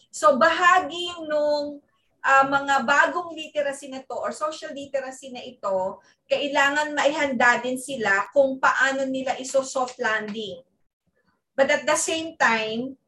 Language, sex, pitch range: Filipino, female, 255-305 Hz